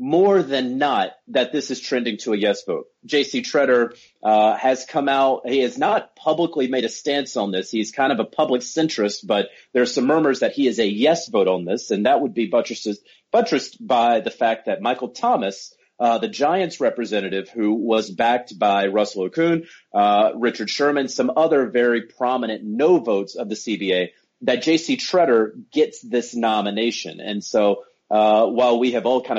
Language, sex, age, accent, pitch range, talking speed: English, male, 30-49, American, 110-145 Hz, 190 wpm